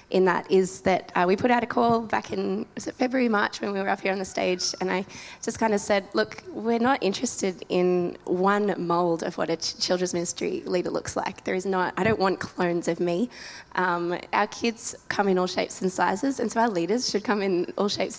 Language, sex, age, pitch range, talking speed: English, female, 20-39, 185-215 Hz, 230 wpm